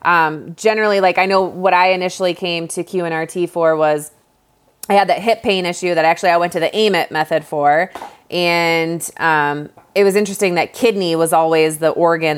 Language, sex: English, female